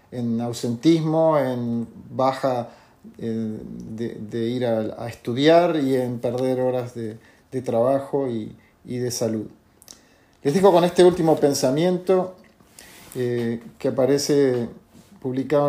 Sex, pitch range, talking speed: male, 120-150 Hz, 120 wpm